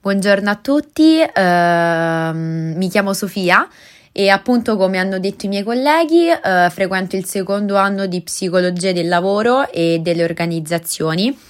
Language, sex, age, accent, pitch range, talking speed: Italian, female, 20-39, native, 165-200 Hz, 140 wpm